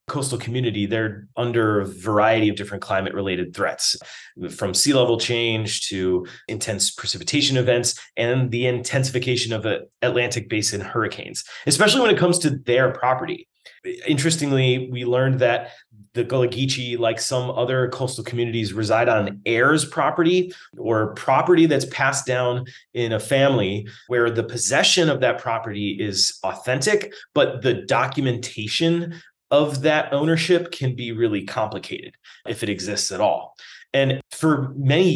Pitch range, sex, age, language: 110-140 Hz, male, 30-49, English